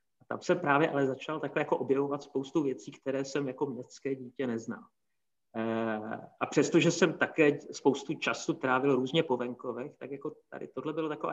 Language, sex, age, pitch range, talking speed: Czech, male, 30-49, 125-145 Hz, 170 wpm